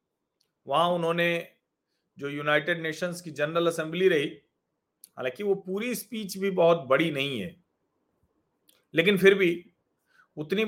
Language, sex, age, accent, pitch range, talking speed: Hindi, male, 40-59, native, 170-220 Hz, 125 wpm